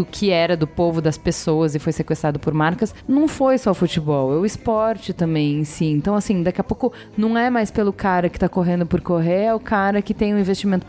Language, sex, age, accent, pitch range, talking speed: Portuguese, female, 20-39, Brazilian, 180-250 Hz, 240 wpm